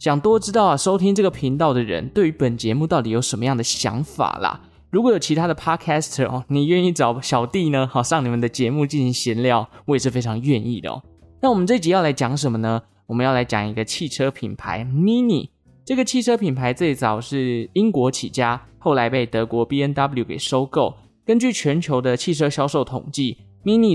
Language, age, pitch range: Chinese, 20-39, 115-160 Hz